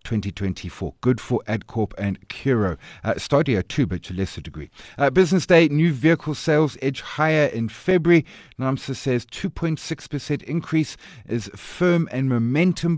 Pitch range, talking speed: 110-155 Hz, 145 wpm